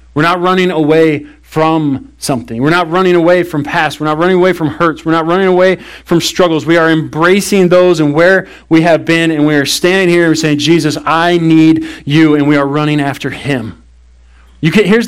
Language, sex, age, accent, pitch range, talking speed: English, male, 40-59, American, 120-170 Hz, 215 wpm